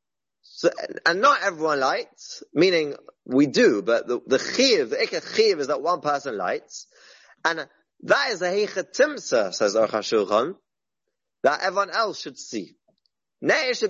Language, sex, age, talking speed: English, male, 30-49, 145 wpm